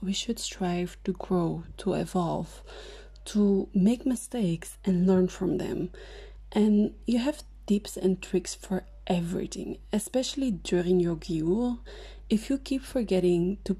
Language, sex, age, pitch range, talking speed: English, female, 20-39, 185-225 Hz, 135 wpm